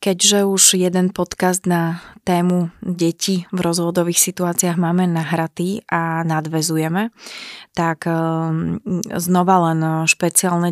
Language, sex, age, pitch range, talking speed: Slovak, female, 20-39, 160-175 Hz, 100 wpm